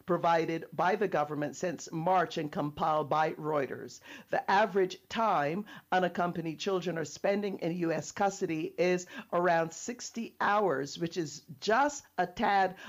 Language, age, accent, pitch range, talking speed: English, 50-69, American, 165-200 Hz, 135 wpm